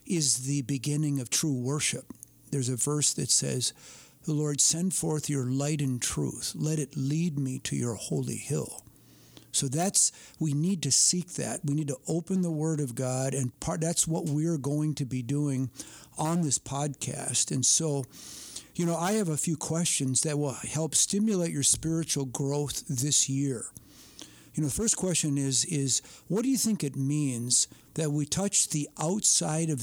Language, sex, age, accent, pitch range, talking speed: English, male, 50-69, American, 130-155 Hz, 180 wpm